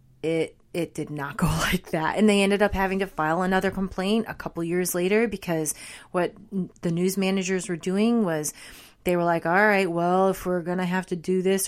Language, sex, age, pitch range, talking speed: English, female, 30-49, 165-190 Hz, 210 wpm